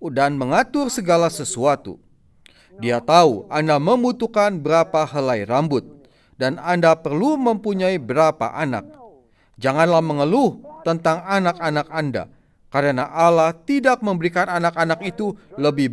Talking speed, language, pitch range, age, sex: 110 wpm, Indonesian, 145-205 Hz, 30-49, male